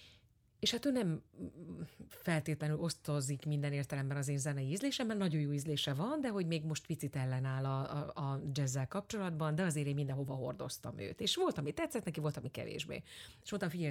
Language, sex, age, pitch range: Hungarian, female, 30-49, 140-185 Hz